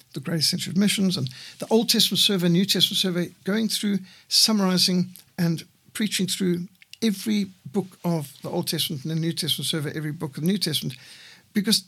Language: English